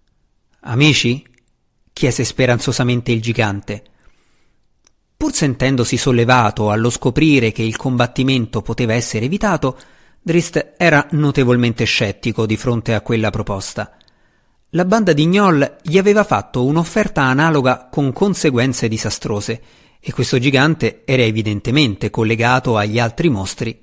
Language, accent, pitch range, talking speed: Italian, native, 110-145 Hz, 115 wpm